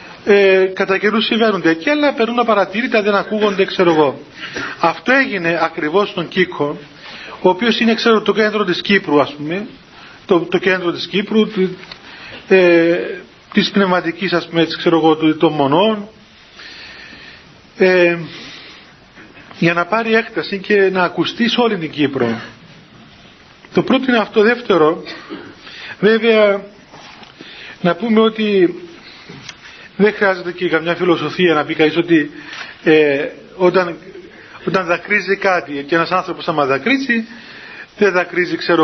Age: 40-59